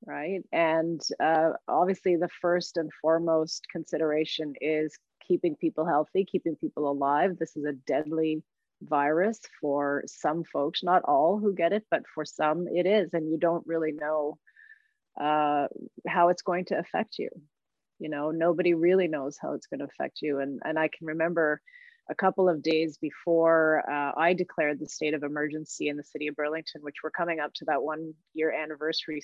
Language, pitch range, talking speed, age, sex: English, 155-175 Hz, 180 wpm, 30-49, female